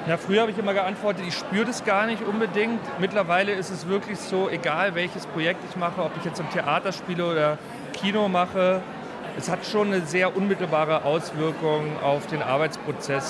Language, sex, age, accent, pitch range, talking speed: German, male, 40-59, German, 155-185 Hz, 185 wpm